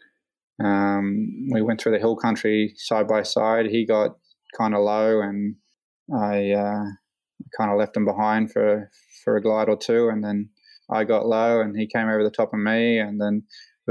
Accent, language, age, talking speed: Australian, English, 20-39, 190 wpm